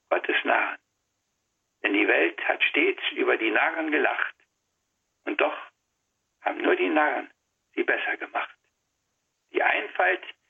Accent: German